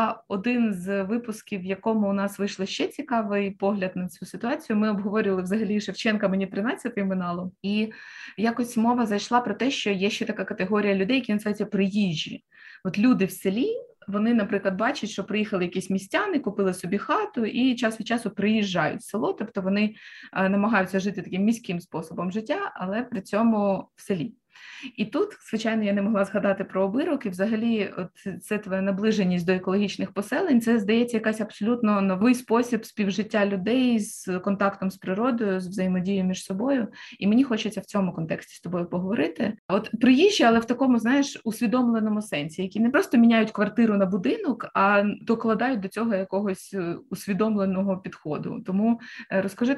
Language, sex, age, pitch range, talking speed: Ukrainian, female, 20-39, 195-230 Hz, 165 wpm